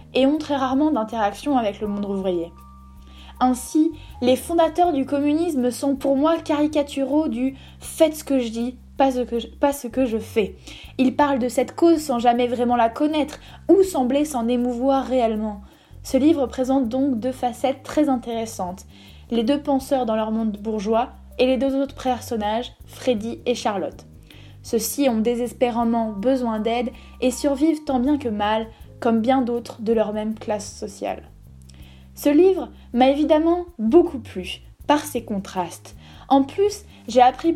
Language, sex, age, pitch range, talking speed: French, female, 10-29, 230-285 Hz, 160 wpm